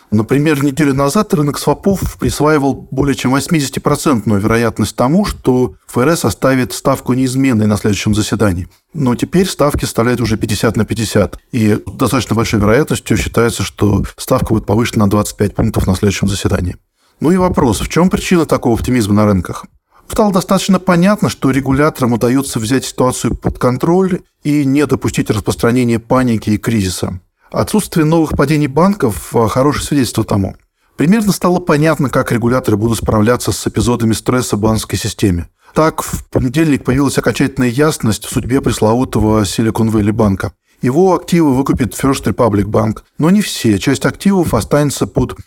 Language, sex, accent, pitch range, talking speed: Russian, male, native, 110-145 Hz, 150 wpm